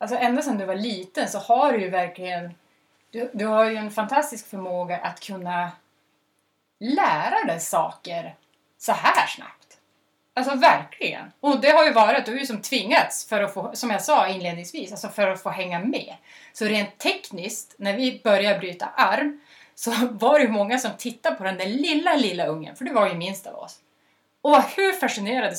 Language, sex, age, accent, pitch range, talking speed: Swedish, female, 30-49, native, 190-265 Hz, 190 wpm